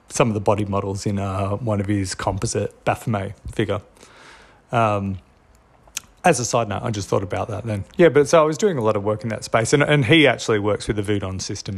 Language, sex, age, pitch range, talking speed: English, male, 30-49, 105-130 Hz, 235 wpm